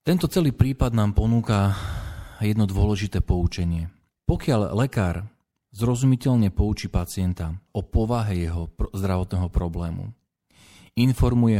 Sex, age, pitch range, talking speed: male, 40-59, 90-110 Hz, 100 wpm